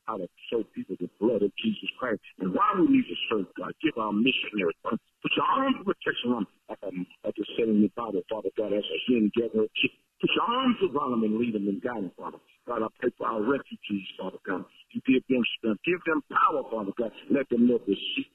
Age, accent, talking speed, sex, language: 50-69, American, 220 wpm, male, English